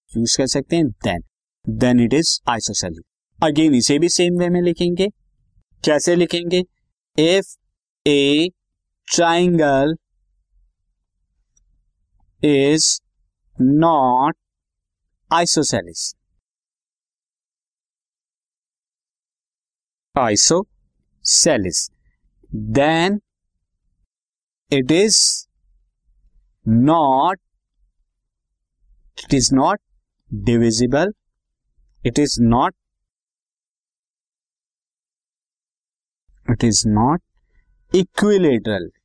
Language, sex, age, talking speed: Hindi, male, 50-69, 60 wpm